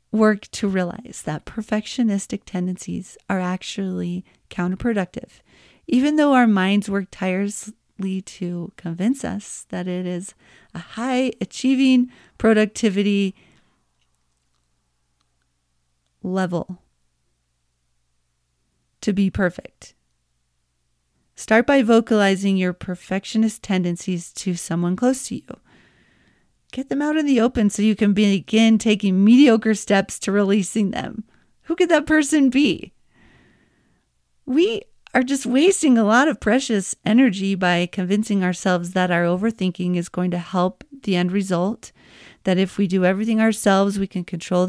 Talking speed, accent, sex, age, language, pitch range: 125 wpm, American, female, 40-59, English, 180-225 Hz